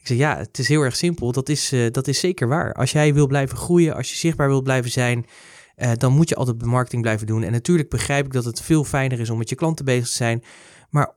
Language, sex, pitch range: Dutch, male, 115-150 Hz